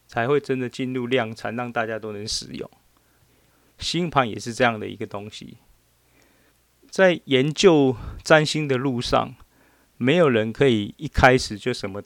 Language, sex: Chinese, male